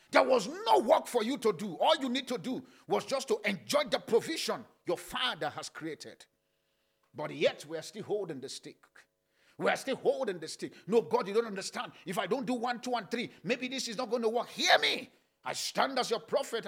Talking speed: 230 wpm